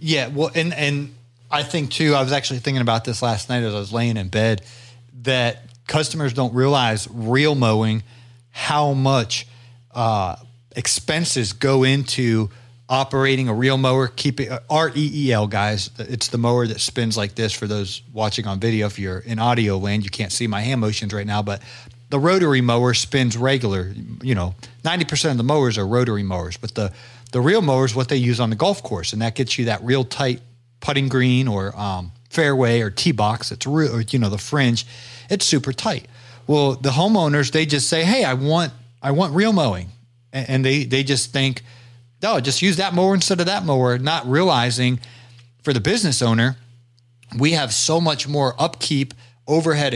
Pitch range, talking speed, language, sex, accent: 115-140 Hz, 195 wpm, English, male, American